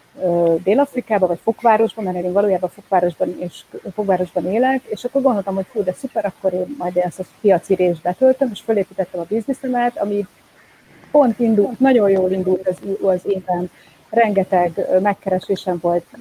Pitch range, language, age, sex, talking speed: 180-220 Hz, Hungarian, 30-49, female, 150 wpm